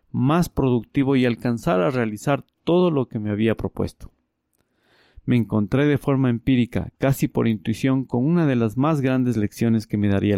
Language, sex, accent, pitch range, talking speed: Spanish, male, Mexican, 110-135 Hz, 175 wpm